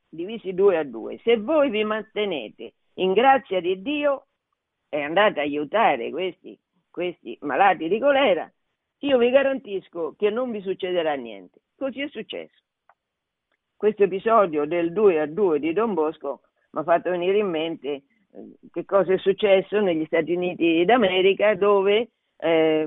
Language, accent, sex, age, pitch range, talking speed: Italian, native, female, 50-69, 175-230 Hz, 150 wpm